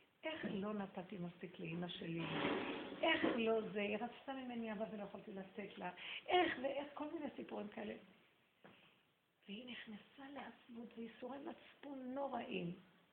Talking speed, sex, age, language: 135 wpm, female, 50-69, Hebrew